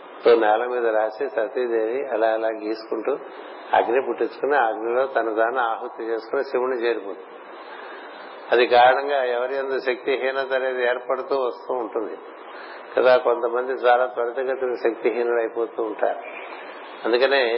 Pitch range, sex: 115-130 Hz, male